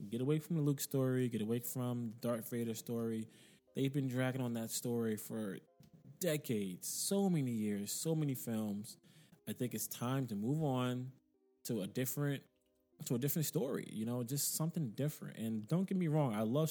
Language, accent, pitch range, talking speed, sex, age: English, American, 110-145 Hz, 185 wpm, male, 20-39